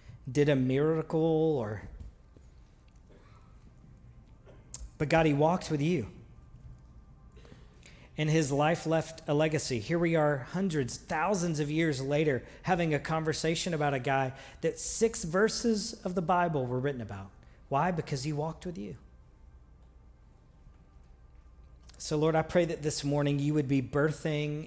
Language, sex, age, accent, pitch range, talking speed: English, male, 40-59, American, 135-165 Hz, 135 wpm